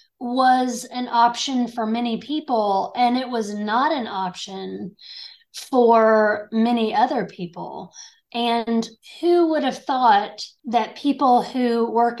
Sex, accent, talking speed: female, American, 125 wpm